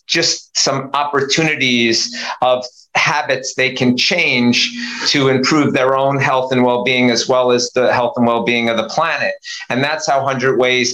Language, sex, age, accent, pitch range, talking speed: English, male, 50-69, American, 120-130 Hz, 165 wpm